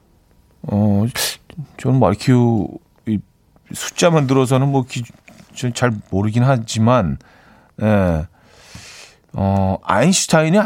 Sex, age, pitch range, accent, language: male, 40-59, 100-150 Hz, native, Korean